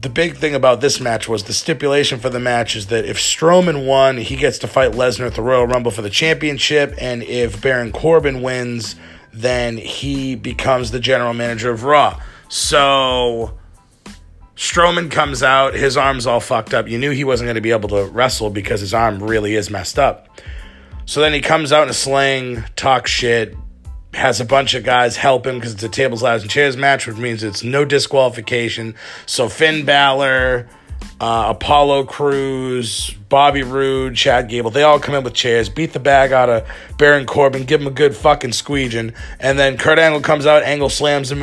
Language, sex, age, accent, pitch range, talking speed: English, male, 30-49, American, 115-140 Hz, 195 wpm